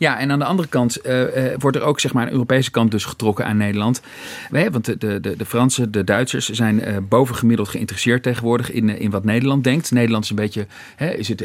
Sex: male